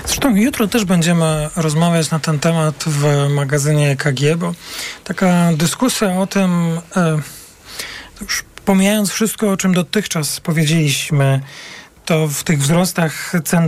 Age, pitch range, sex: 40-59, 145-180 Hz, male